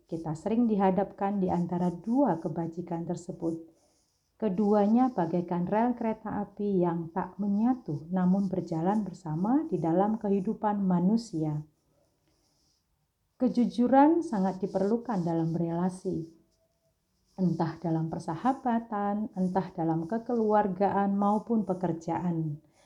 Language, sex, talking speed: Indonesian, female, 95 wpm